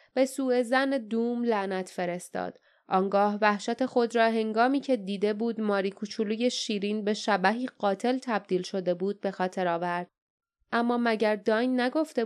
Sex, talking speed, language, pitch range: female, 145 wpm, Persian, 200-270 Hz